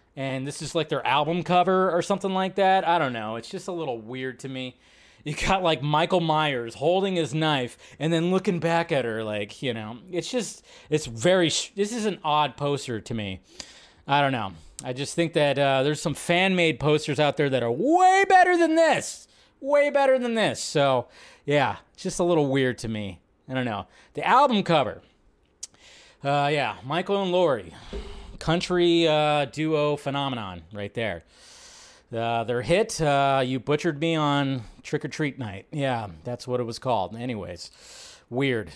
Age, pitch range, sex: 20-39, 130-195 Hz, male